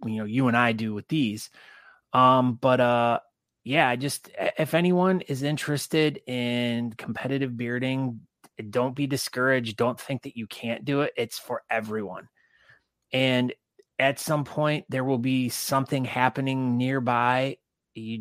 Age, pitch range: 30-49, 115-135 Hz